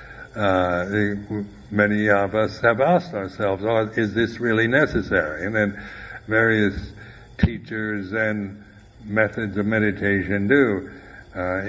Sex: male